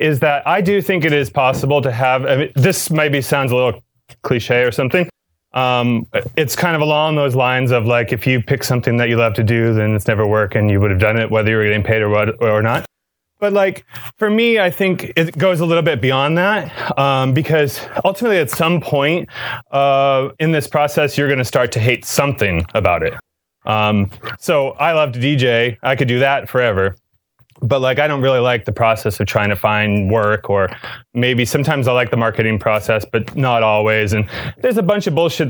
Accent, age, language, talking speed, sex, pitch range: American, 30-49, English, 220 wpm, male, 115-145 Hz